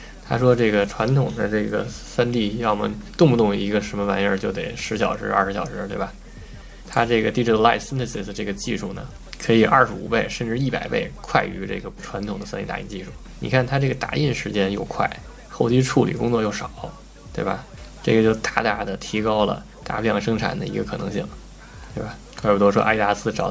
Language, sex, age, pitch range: Chinese, male, 20-39, 105-125 Hz